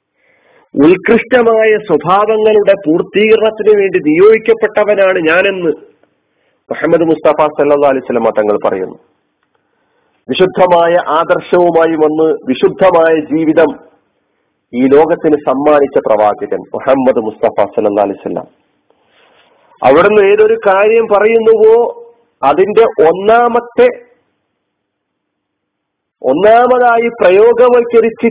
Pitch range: 155-225 Hz